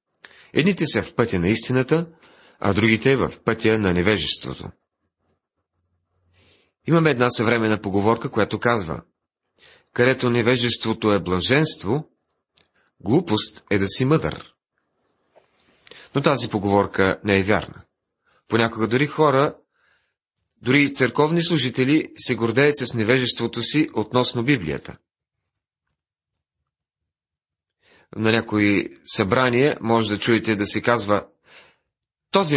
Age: 40-59